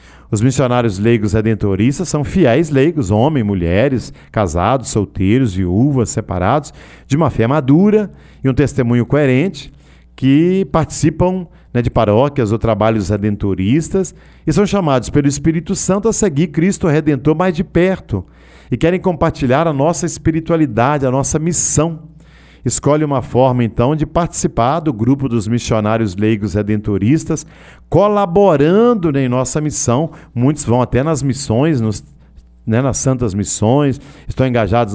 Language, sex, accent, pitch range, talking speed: Portuguese, male, Brazilian, 110-150 Hz, 135 wpm